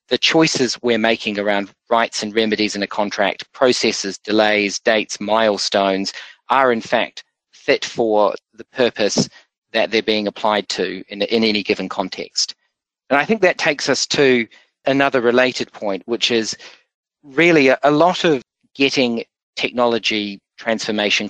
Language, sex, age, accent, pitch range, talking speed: English, male, 40-59, Australian, 105-125 Hz, 145 wpm